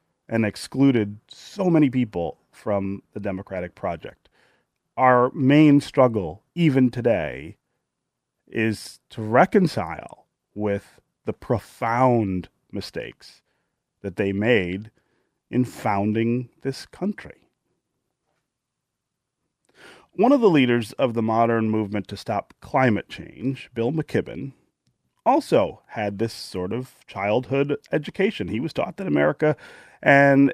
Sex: male